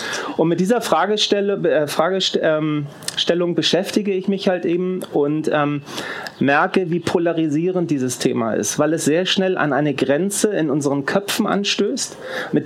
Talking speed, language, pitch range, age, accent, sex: 145 wpm, German, 155-185 Hz, 30-49, German, male